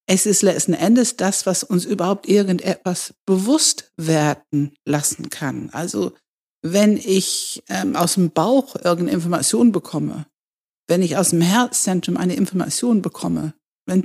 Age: 60-79